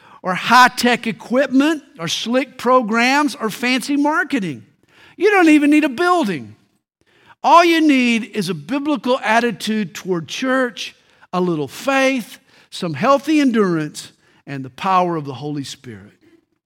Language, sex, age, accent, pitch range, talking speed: English, male, 50-69, American, 175-265 Hz, 135 wpm